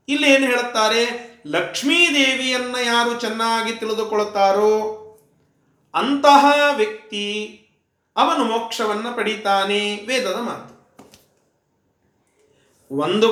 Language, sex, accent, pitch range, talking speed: Kannada, male, native, 210-265 Hz, 70 wpm